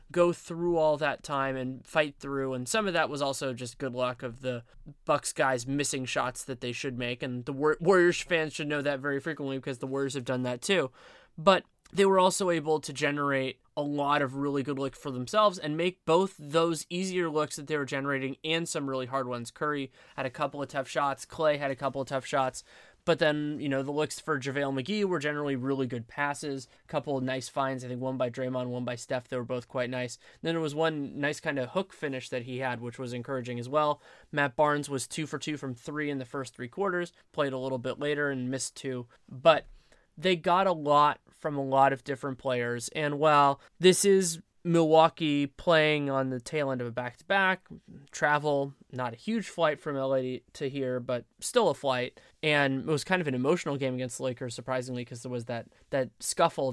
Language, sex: English, male